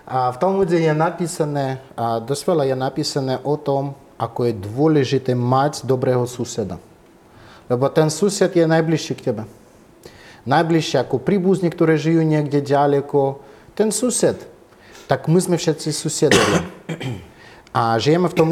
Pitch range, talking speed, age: 130-175 Hz, 135 wpm, 30-49